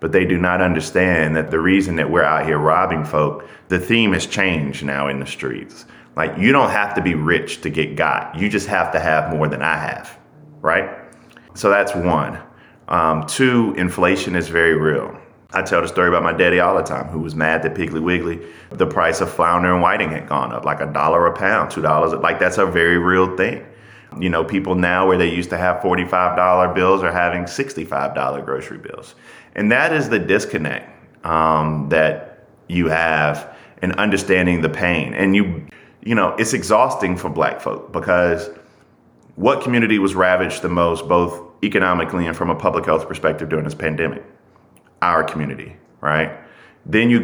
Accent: American